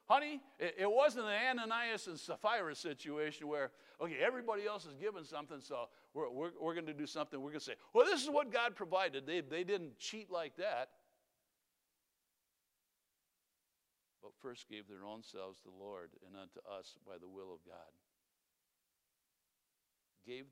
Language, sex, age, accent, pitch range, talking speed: English, male, 60-79, American, 120-170 Hz, 165 wpm